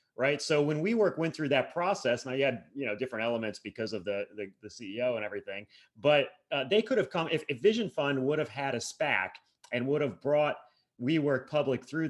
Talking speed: 235 wpm